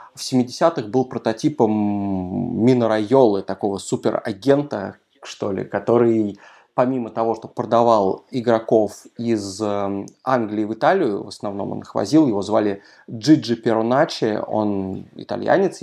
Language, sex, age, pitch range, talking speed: Russian, male, 20-39, 105-125 Hz, 115 wpm